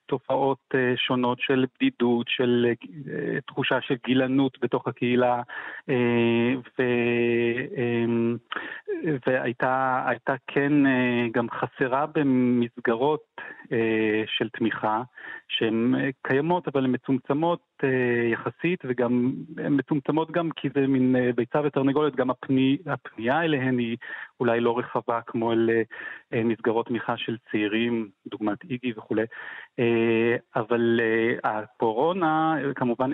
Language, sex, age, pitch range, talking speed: Hebrew, male, 30-49, 115-135 Hz, 100 wpm